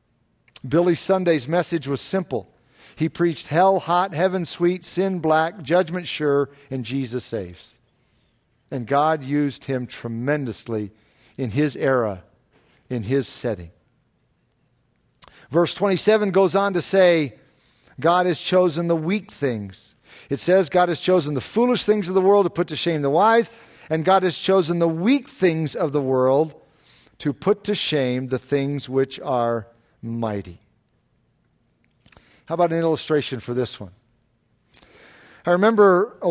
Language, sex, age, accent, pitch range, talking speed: English, male, 50-69, American, 135-185 Hz, 145 wpm